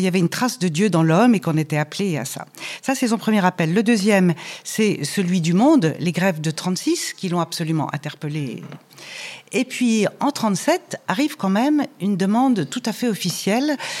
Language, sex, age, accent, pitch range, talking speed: French, female, 60-79, French, 170-235 Hz, 200 wpm